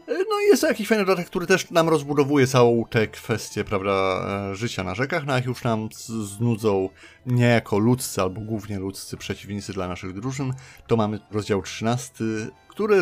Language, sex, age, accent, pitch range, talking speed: Polish, male, 30-49, native, 100-120 Hz, 170 wpm